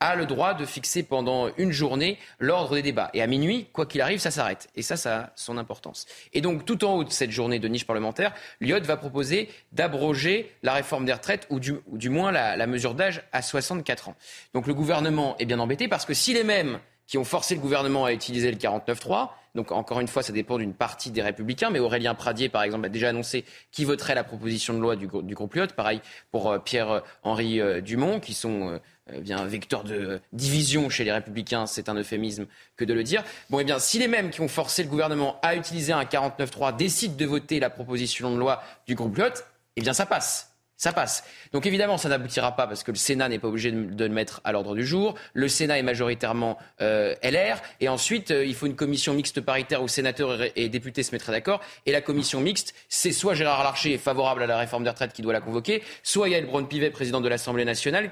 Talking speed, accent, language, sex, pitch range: 230 wpm, French, French, male, 120-160 Hz